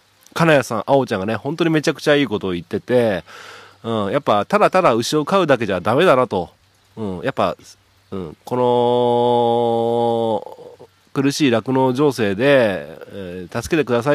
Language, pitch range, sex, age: Japanese, 100-140 Hz, male, 40-59